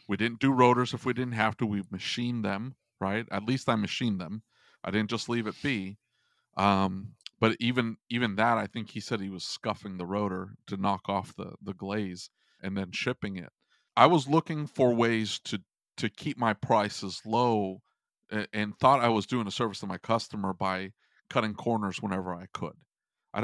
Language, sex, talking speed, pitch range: English, male, 195 wpm, 100-120 Hz